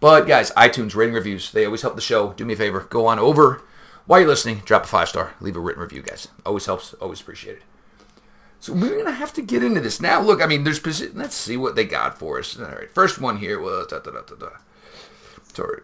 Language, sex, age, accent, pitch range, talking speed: English, male, 40-59, American, 115-175 Hz, 225 wpm